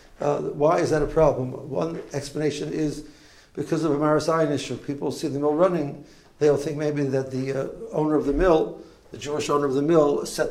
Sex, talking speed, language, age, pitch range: male, 205 wpm, English, 60-79, 135-155 Hz